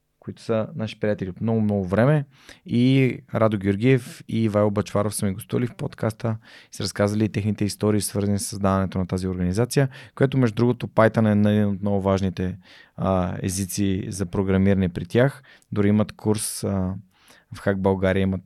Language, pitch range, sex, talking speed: Bulgarian, 95-115 Hz, male, 170 wpm